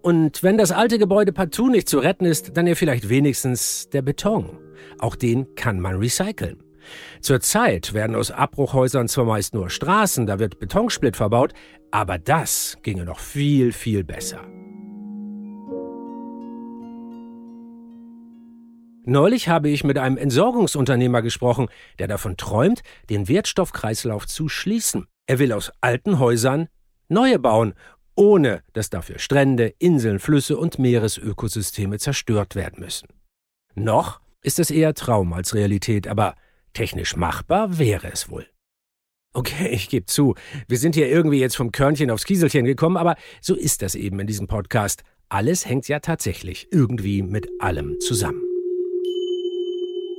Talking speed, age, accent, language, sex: 135 wpm, 50-69, German, German, male